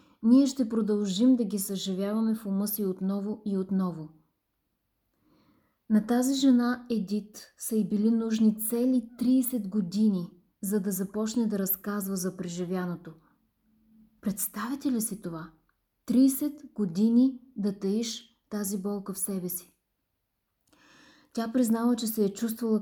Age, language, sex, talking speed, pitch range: 30-49, Bulgarian, female, 130 wpm, 195-230 Hz